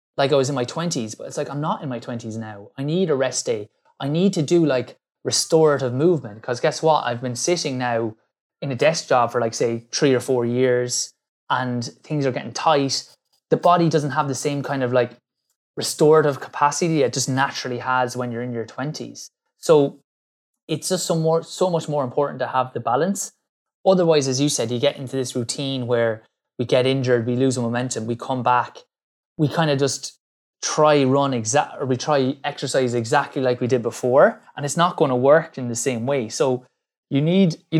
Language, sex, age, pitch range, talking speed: English, male, 20-39, 125-150 Hz, 210 wpm